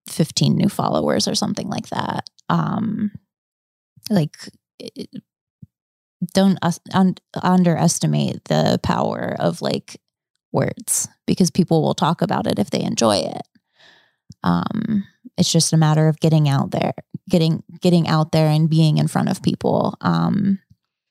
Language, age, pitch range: English, 20-39, 155-175 Hz